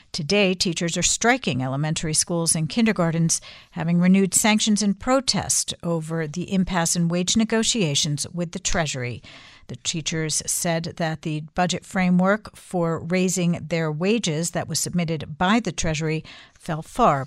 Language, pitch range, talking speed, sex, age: English, 160-195 Hz, 140 wpm, female, 60-79